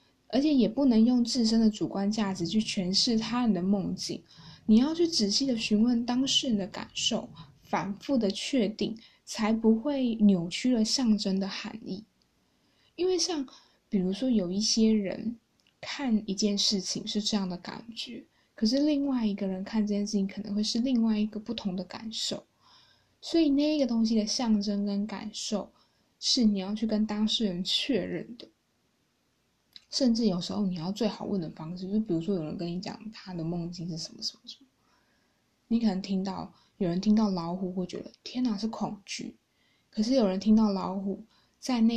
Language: Chinese